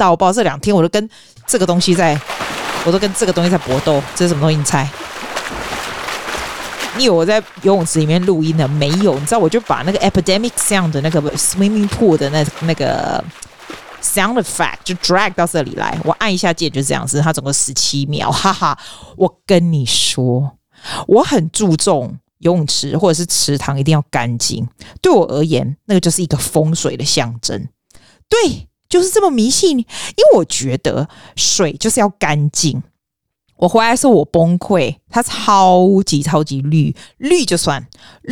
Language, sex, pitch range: Chinese, female, 150-210 Hz